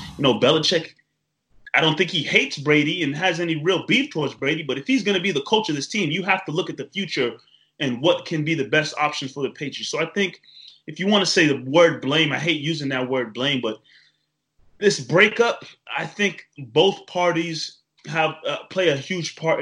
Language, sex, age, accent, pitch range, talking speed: English, male, 20-39, American, 130-165 Hz, 225 wpm